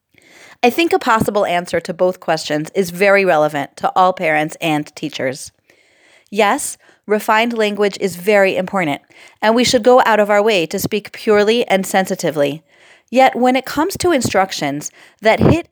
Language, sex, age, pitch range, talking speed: English, female, 30-49, 185-235 Hz, 165 wpm